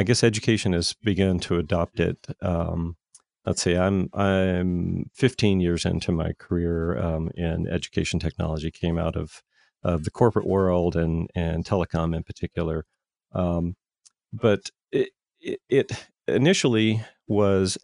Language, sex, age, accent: English, male, 40-59, American